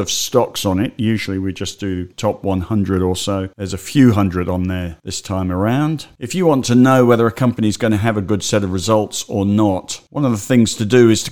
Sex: male